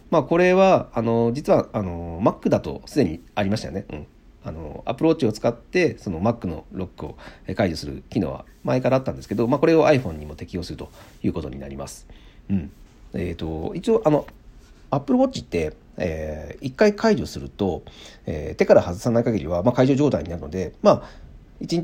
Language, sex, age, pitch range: Japanese, male, 40-59, 85-140 Hz